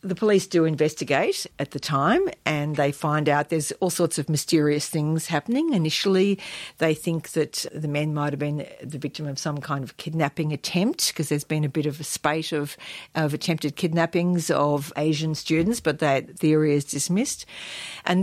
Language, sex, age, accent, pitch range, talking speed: English, female, 60-79, Australian, 150-175 Hz, 185 wpm